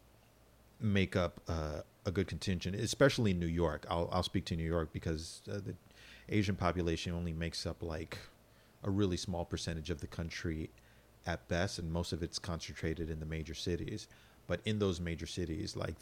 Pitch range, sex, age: 85-100 Hz, male, 40-59